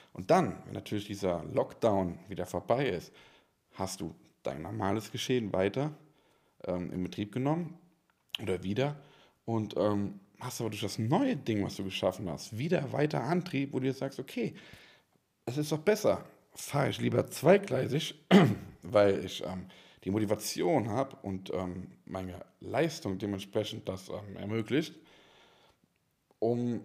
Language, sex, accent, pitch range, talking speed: German, male, German, 100-140 Hz, 145 wpm